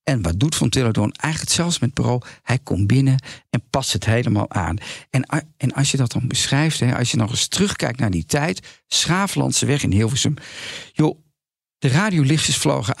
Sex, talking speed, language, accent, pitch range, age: male, 190 wpm, Dutch, Dutch, 135-175 Hz, 50-69